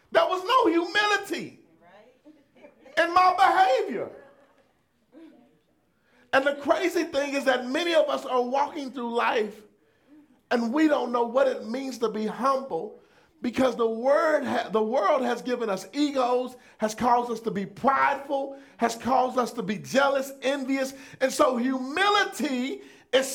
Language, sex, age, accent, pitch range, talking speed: English, male, 40-59, American, 245-305 Hz, 140 wpm